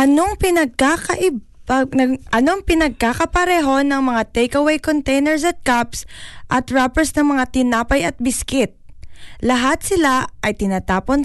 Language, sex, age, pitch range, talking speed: Filipino, female, 20-39, 220-285 Hz, 105 wpm